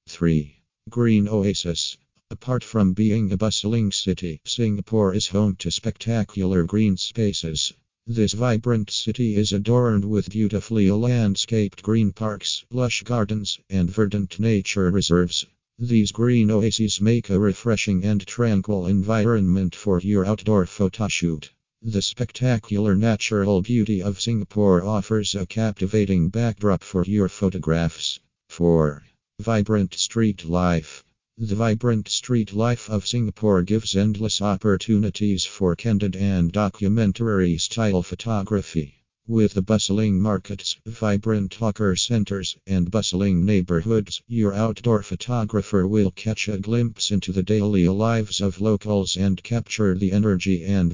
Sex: male